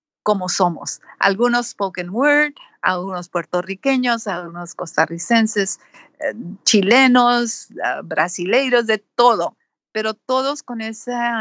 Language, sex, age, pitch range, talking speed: Spanish, female, 50-69, 180-240 Hz, 100 wpm